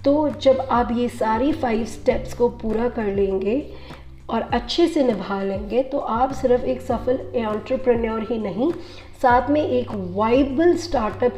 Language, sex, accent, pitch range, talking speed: English, female, Indian, 200-255 Hz, 155 wpm